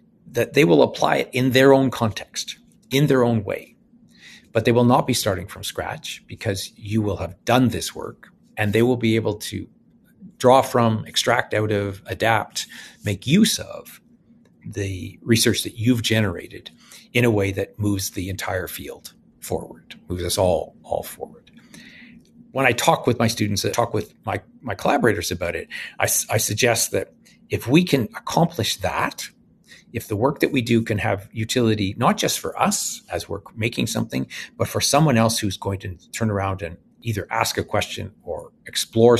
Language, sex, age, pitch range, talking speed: English, male, 50-69, 100-125 Hz, 180 wpm